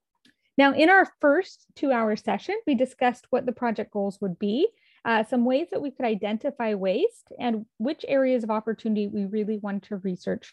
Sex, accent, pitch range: female, American, 210-275 Hz